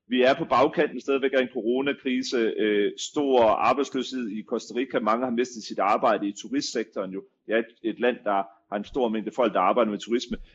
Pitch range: 110-140 Hz